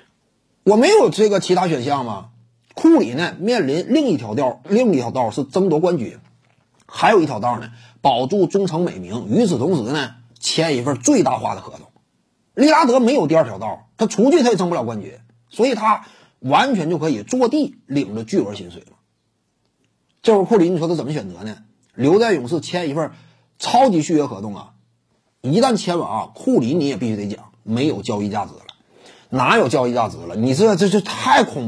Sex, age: male, 30-49